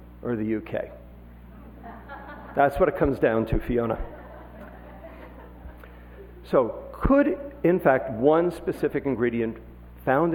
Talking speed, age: 105 wpm, 50-69